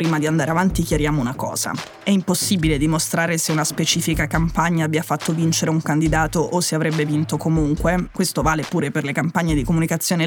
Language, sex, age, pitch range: Italian, female, 20-39, 150-180 Hz